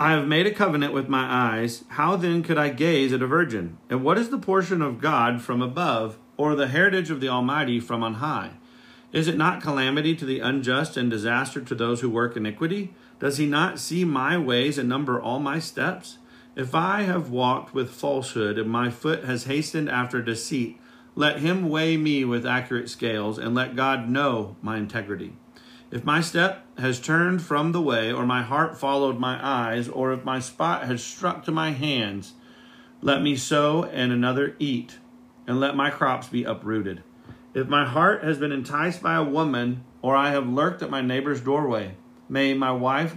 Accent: American